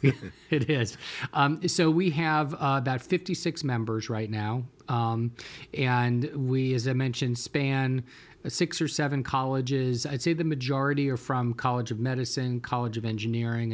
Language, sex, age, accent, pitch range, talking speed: English, male, 40-59, American, 115-140 Hz, 155 wpm